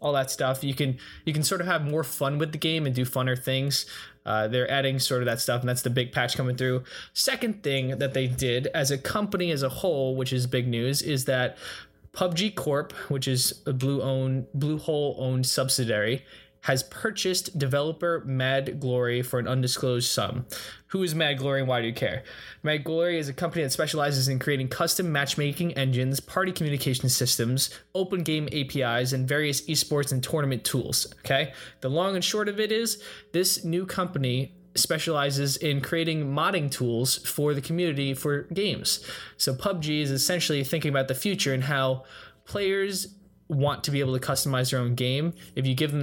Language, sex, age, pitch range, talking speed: English, male, 20-39, 130-155 Hz, 195 wpm